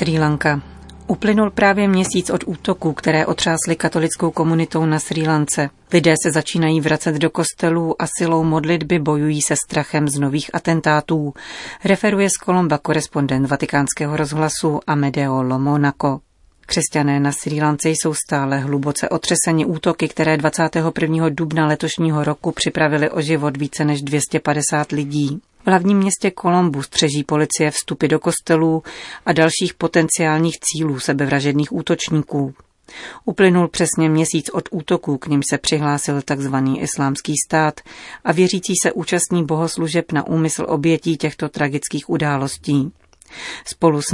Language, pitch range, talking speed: Czech, 145-170 Hz, 135 wpm